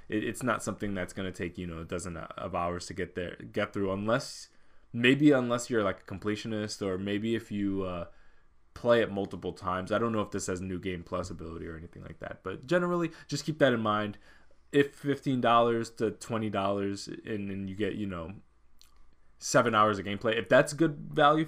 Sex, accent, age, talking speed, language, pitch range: male, American, 20-39, 205 wpm, English, 95-115 Hz